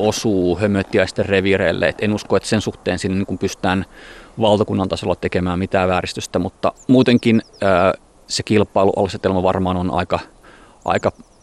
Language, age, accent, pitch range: Finnish, 30-49, native, 90-105 Hz